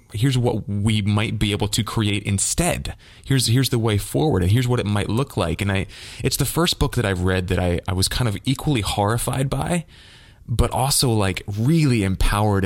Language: English